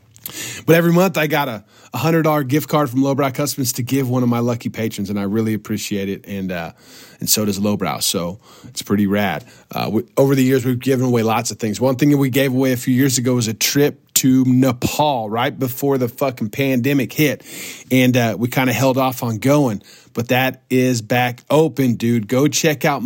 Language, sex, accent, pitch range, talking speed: English, male, American, 110-140 Hz, 220 wpm